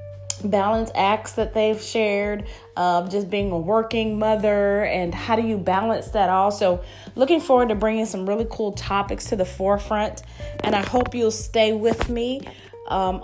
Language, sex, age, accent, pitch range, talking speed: English, female, 20-39, American, 190-225 Hz, 170 wpm